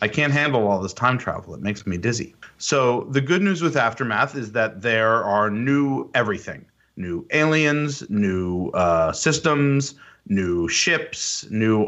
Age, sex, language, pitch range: 30-49, male, English, 100-120 Hz